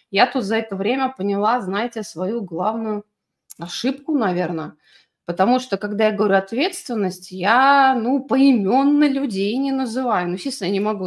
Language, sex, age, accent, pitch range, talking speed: Russian, female, 30-49, native, 195-275 Hz, 150 wpm